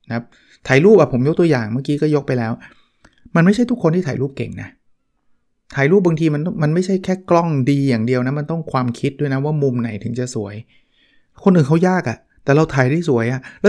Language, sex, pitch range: Thai, male, 120-155 Hz